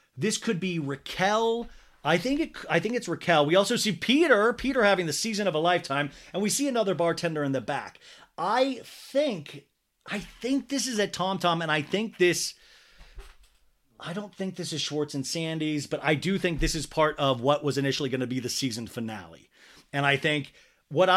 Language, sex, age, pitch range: English, male, 30-49, 130-175 Hz